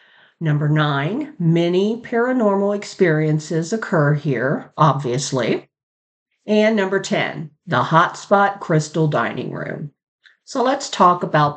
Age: 50-69